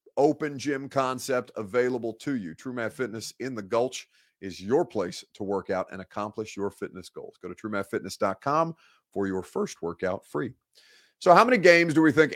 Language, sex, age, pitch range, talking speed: English, male, 30-49, 105-140 Hz, 185 wpm